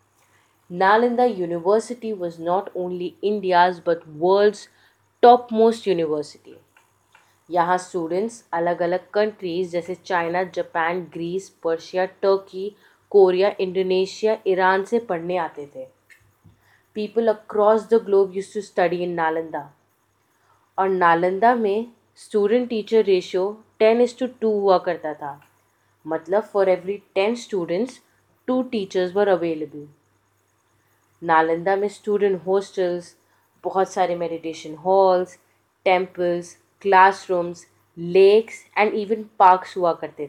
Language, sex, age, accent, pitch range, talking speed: Hindi, female, 20-39, native, 165-205 Hz, 115 wpm